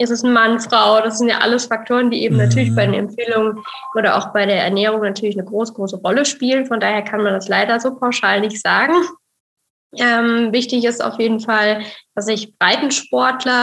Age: 10-29